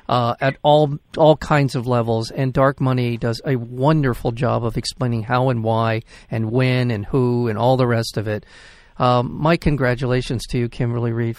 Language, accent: English, American